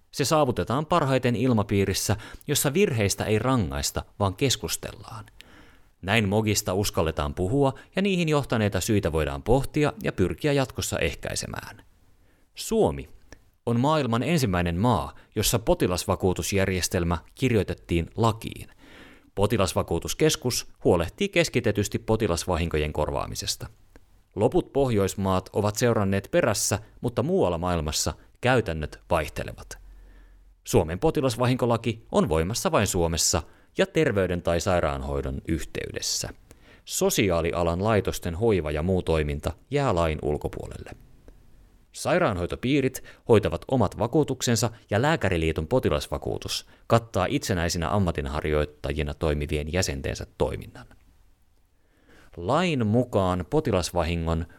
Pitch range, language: 85-120 Hz, Finnish